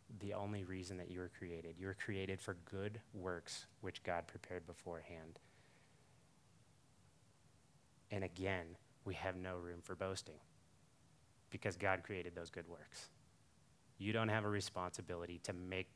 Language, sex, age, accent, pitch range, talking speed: English, male, 30-49, American, 90-105 Hz, 145 wpm